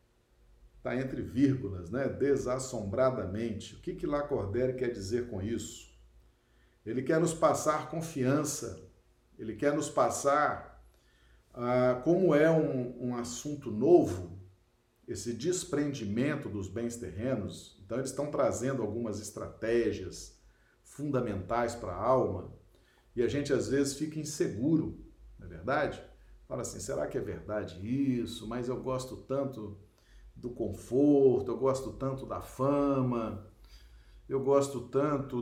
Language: Portuguese